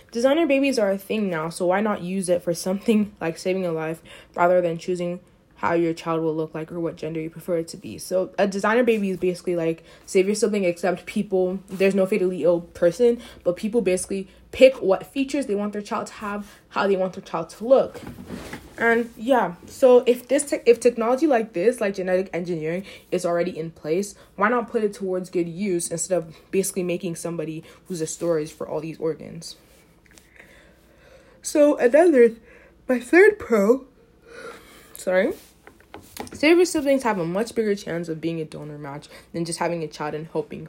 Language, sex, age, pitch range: English, female, 20-39, 170-230 Hz